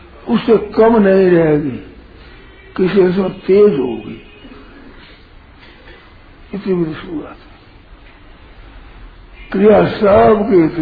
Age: 60-79